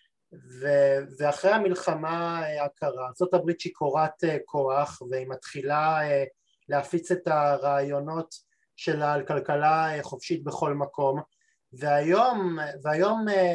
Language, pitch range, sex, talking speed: Hebrew, 145-185 Hz, male, 90 wpm